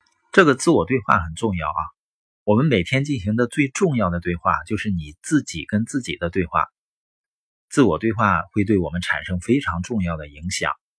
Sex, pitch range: male, 90-120 Hz